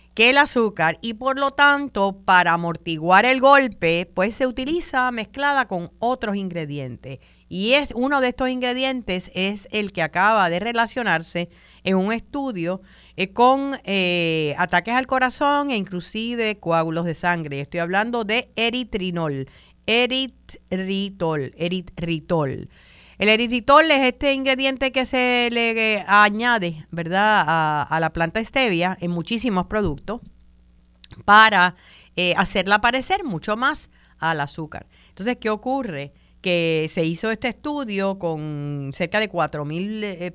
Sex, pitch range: female, 170-240 Hz